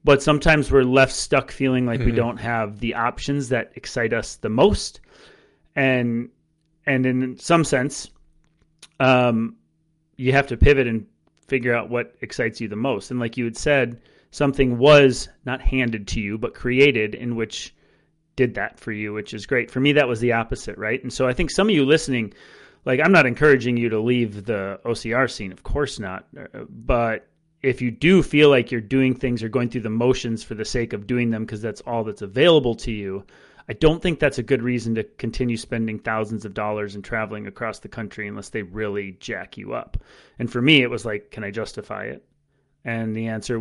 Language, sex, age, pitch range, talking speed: English, male, 30-49, 110-140 Hz, 205 wpm